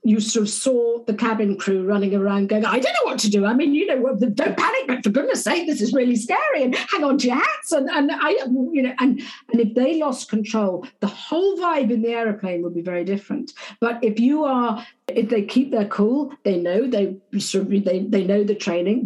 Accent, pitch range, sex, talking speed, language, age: British, 205-280 Hz, female, 235 wpm, English, 50-69